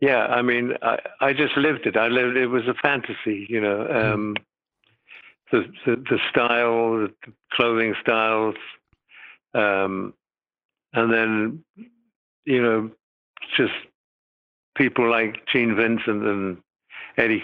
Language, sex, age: English, male, 60-79